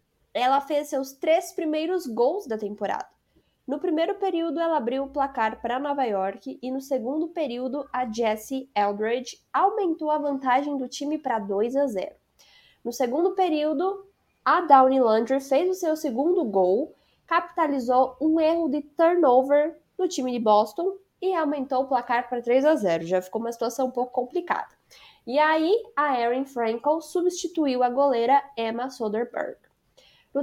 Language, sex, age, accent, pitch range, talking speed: Portuguese, female, 10-29, Brazilian, 245-310 Hz, 160 wpm